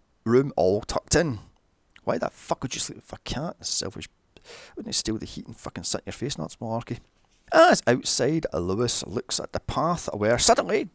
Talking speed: 210 wpm